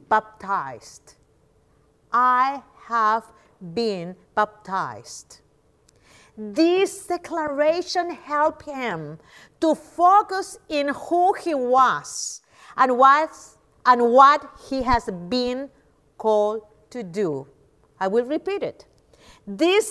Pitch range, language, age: 190-290 Hz, English, 50-69